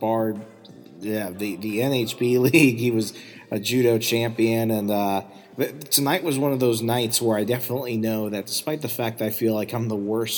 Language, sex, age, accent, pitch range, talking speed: English, male, 30-49, American, 105-115 Hz, 190 wpm